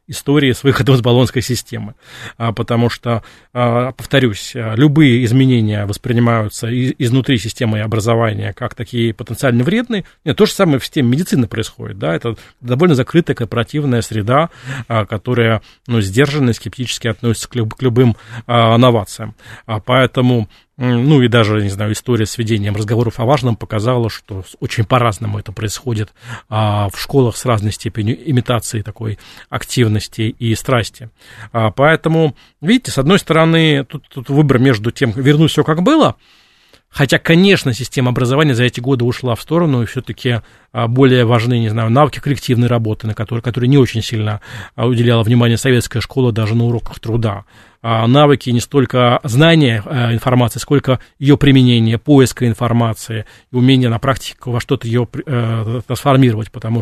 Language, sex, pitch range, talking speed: Russian, male, 115-130 Hz, 150 wpm